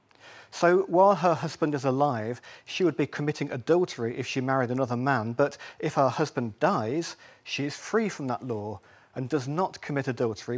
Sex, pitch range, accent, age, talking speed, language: male, 120-160 Hz, British, 40-59, 180 wpm, English